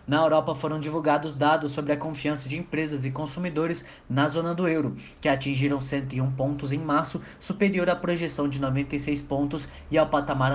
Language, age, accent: Portuguese, 20-39, Brazilian